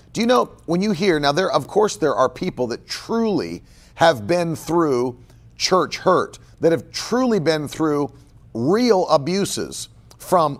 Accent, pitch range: American, 130-190 Hz